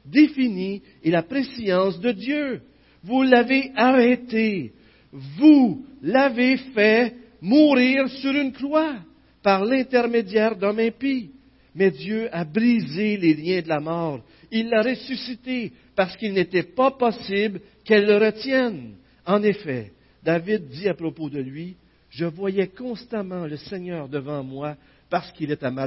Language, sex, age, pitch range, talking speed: French, male, 50-69, 140-230 Hz, 140 wpm